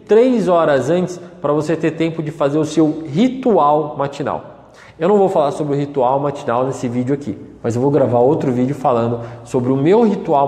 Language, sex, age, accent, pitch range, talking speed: Portuguese, male, 20-39, Brazilian, 130-165 Hz, 200 wpm